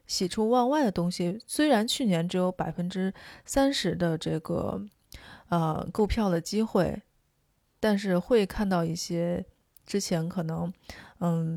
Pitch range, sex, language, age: 175-220 Hz, female, Chinese, 30-49